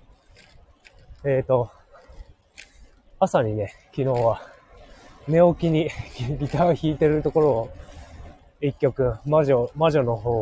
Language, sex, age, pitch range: Japanese, male, 20-39, 110-165 Hz